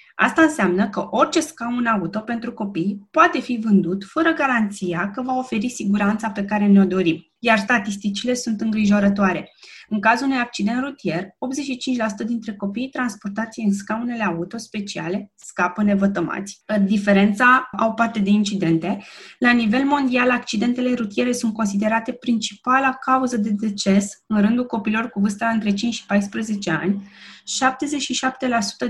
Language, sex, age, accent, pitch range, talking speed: Romanian, female, 20-39, native, 205-245 Hz, 140 wpm